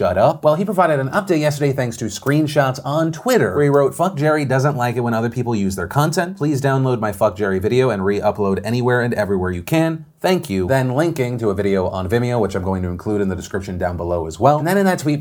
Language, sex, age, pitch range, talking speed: English, male, 30-49, 110-150 Hz, 255 wpm